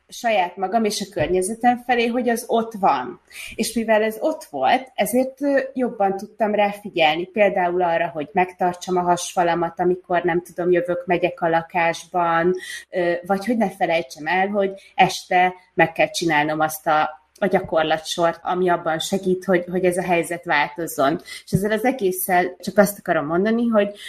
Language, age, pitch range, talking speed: Hungarian, 30-49, 170-205 Hz, 160 wpm